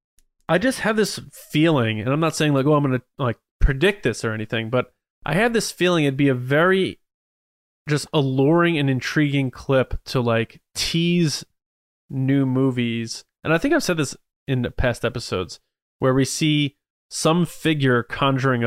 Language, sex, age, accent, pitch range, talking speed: English, male, 20-39, American, 120-150 Hz, 170 wpm